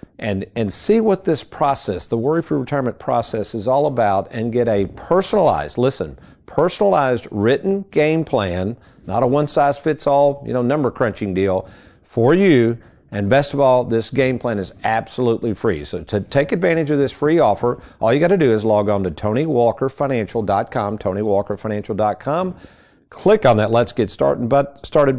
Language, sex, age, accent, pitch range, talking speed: English, male, 50-69, American, 105-150 Hz, 160 wpm